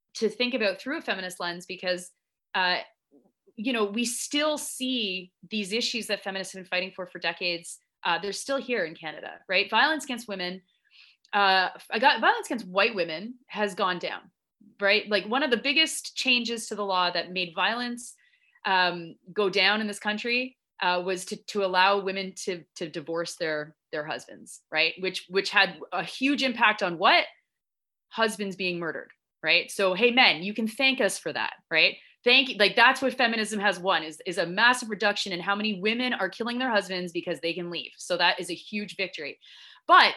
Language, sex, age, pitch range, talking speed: English, female, 30-49, 185-250 Hz, 190 wpm